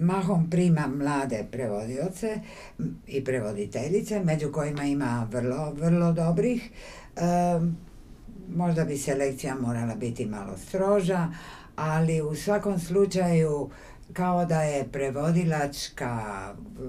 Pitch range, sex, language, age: 130-175 Hz, female, Croatian, 60-79